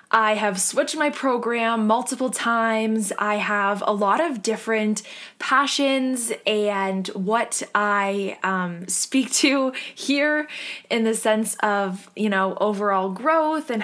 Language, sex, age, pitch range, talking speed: English, female, 10-29, 195-230 Hz, 130 wpm